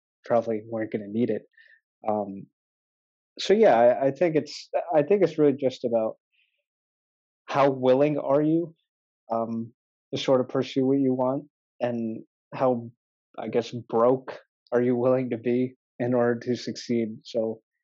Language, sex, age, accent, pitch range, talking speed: Telugu, male, 20-39, American, 115-130 Hz, 155 wpm